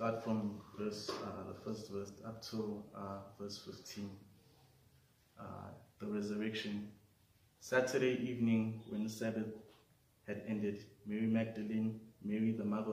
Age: 20-39